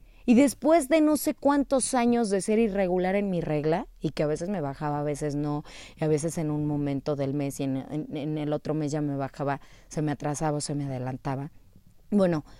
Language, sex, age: Spanish, female, 20-39